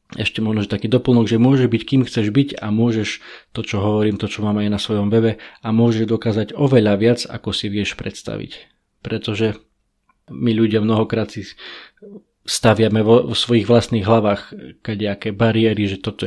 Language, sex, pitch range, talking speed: Slovak, male, 105-115 Hz, 175 wpm